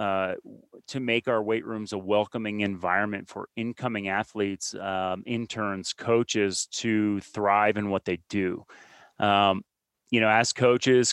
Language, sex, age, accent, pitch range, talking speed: English, male, 30-49, American, 105-125 Hz, 140 wpm